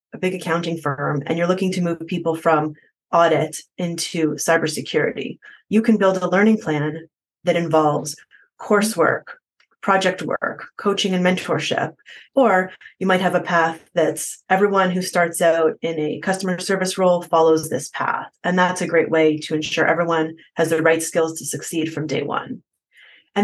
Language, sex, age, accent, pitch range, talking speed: English, female, 30-49, American, 160-190 Hz, 165 wpm